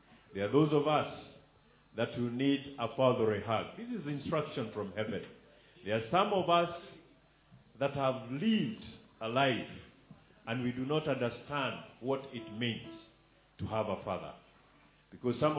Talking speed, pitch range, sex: 160 wpm, 110-145 Hz, male